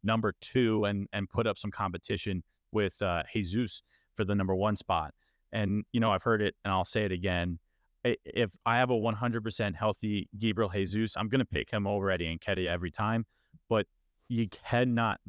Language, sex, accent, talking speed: English, male, American, 190 wpm